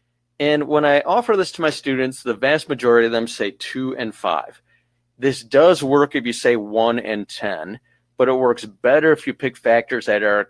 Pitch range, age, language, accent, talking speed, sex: 120-145 Hz, 40-59, English, American, 205 wpm, male